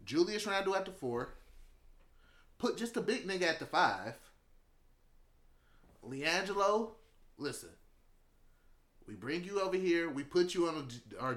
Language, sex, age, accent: English, male, 30-49, American